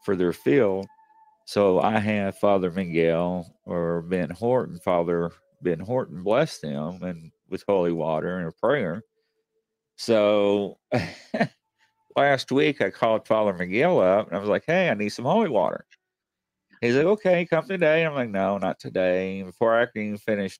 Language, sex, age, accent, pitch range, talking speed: English, male, 40-59, American, 95-115 Hz, 165 wpm